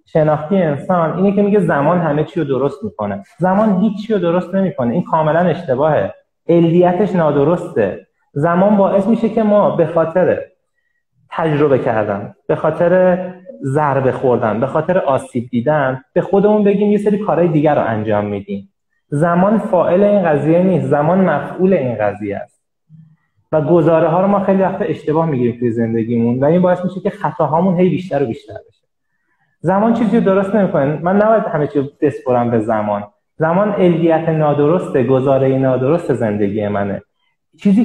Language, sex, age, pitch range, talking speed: Persian, male, 30-49, 130-185 Hz, 150 wpm